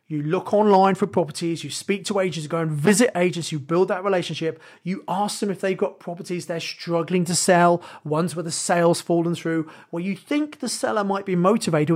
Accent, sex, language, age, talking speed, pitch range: British, male, English, 30-49, 215 wpm, 160-195 Hz